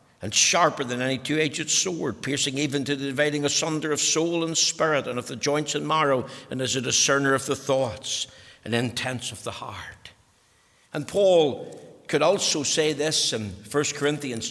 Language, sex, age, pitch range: English, male, 60-79, 115-150 Hz